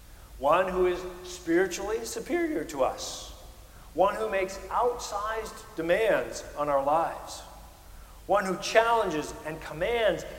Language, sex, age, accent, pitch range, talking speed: English, male, 50-69, American, 125-190 Hz, 115 wpm